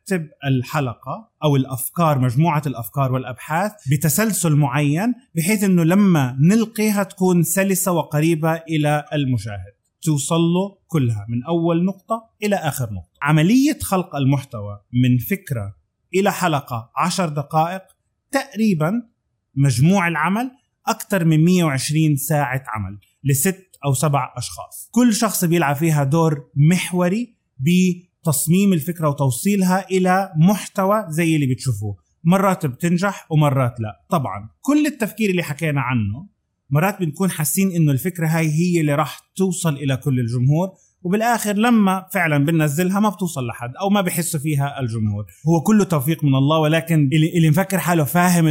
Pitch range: 140-190 Hz